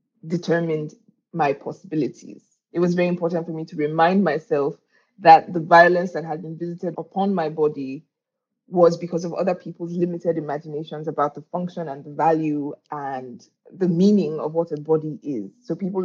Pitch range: 155-185 Hz